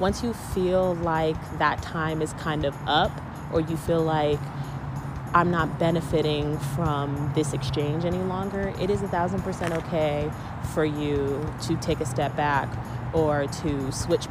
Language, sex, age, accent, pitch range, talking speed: English, female, 20-39, American, 145-165 Hz, 155 wpm